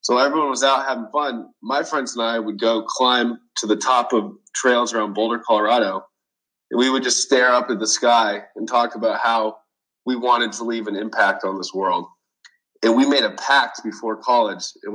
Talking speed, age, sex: 205 wpm, 20-39, male